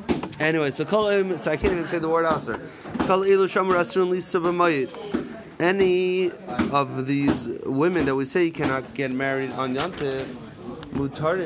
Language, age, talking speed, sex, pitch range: English, 30-49, 130 wpm, male, 135-170 Hz